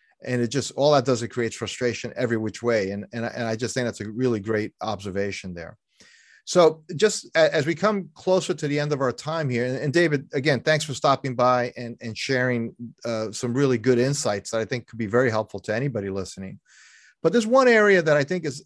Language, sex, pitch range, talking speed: English, male, 115-150 Hz, 225 wpm